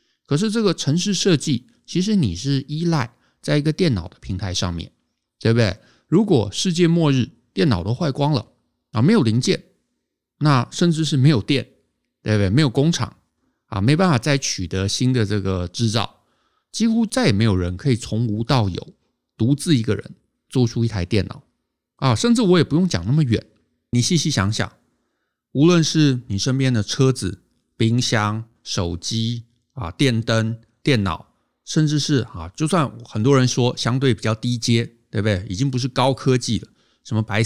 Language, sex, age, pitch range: Chinese, male, 50-69, 105-140 Hz